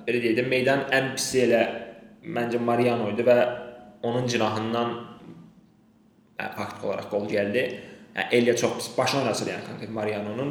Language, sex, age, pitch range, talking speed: English, male, 20-39, 110-130 Hz, 130 wpm